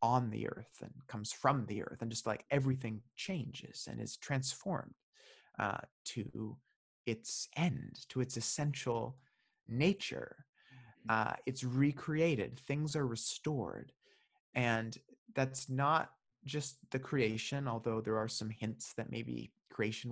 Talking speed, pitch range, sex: 130 wpm, 115-135 Hz, male